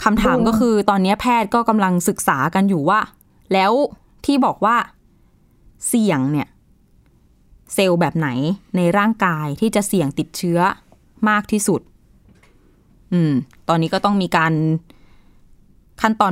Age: 20-39